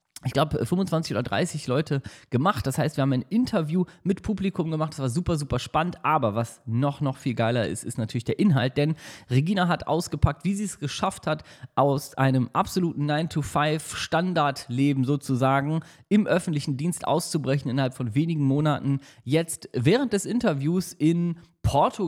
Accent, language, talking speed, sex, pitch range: German, German, 170 wpm, male, 130-165 Hz